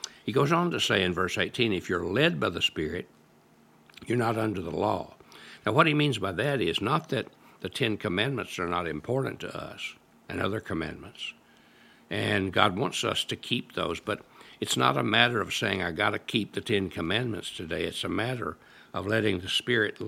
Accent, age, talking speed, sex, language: American, 60-79, 205 wpm, male, English